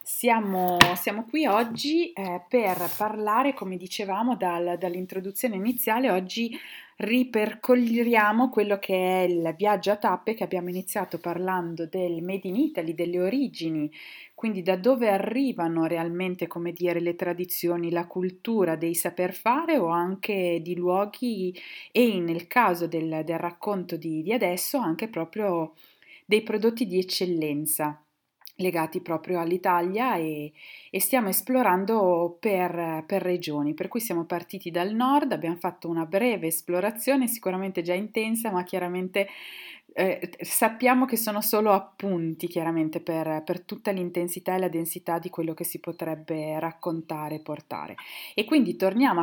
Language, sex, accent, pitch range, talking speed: Italian, female, native, 170-225 Hz, 140 wpm